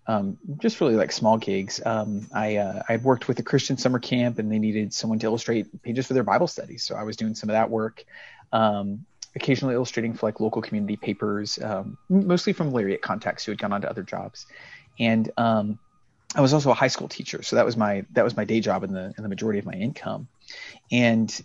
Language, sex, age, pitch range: English, male, 30-49, 105-125 Hz